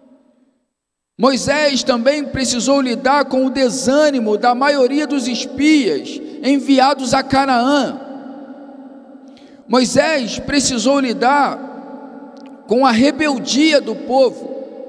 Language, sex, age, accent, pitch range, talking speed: Portuguese, male, 50-69, Brazilian, 235-275 Hz, 90 wpm